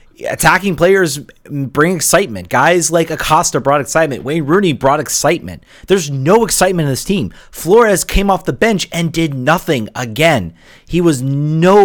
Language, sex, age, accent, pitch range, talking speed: English, male, 30-49, American, 135-185 Hz, 155 wpm